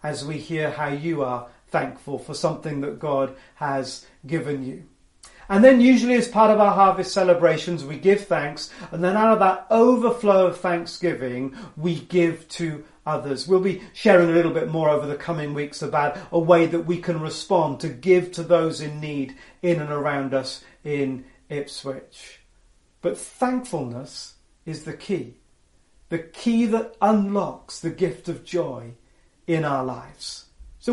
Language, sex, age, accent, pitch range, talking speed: English, male, 40-59, British, 150-200 Hz, 165 wpm